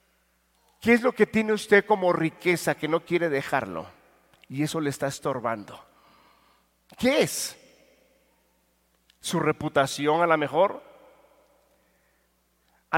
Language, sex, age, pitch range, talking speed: Spanish, male, 50-69, 165-200 Hz, 115 wpm